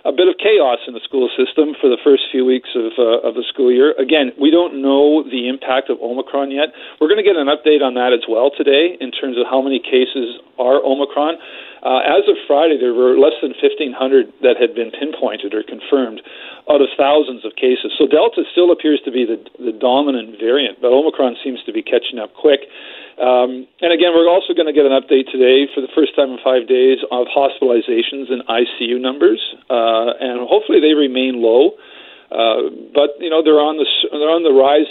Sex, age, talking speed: male, 50-69, 215 wpm